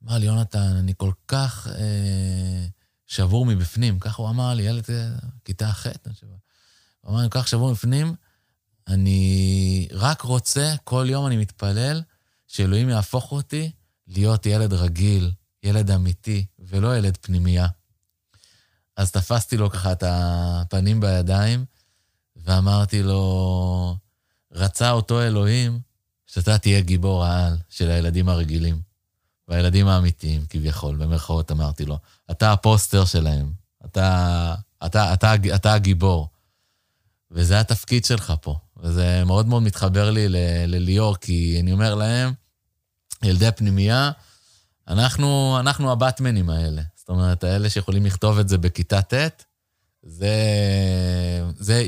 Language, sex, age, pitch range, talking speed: Hebrew, male, 20-39, 90-110 Hz, 130 wpm